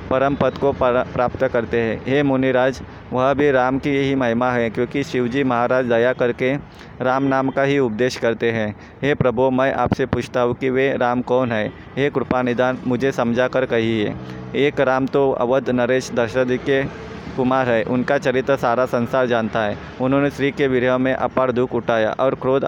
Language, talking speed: Hindi, 185 wpm